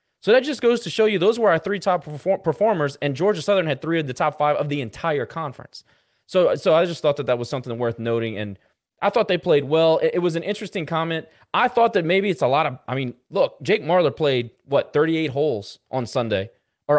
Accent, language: American, English